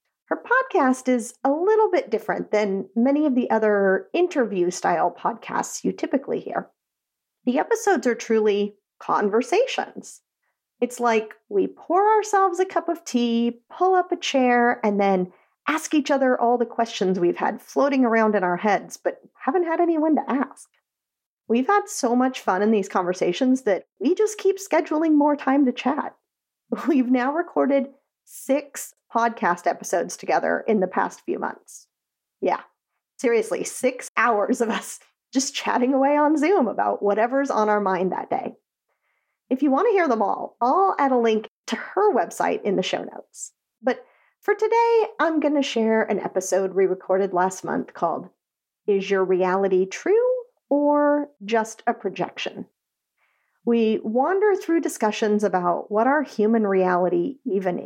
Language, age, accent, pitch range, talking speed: English, 40-59, American, 210-310 Hz, 160 wpm